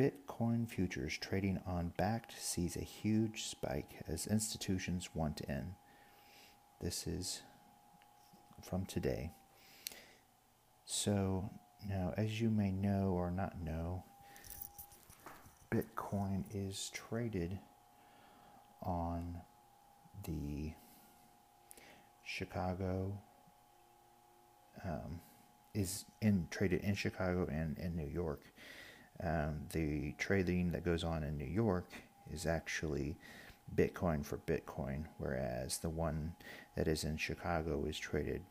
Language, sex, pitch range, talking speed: English, male, 85-105 Hz, 100 wpm